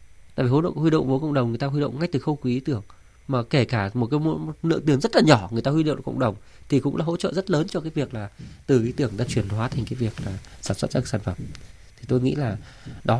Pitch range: 110-145 Hz